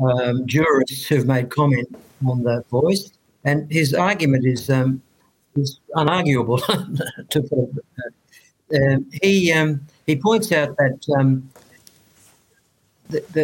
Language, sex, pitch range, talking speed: English, male, 130-155 Hz, 125 wpm